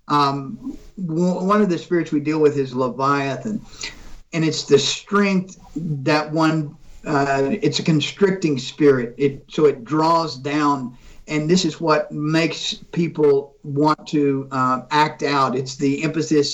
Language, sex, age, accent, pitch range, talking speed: English, male, 50-69, American, 140-160 Hz, 145 wpm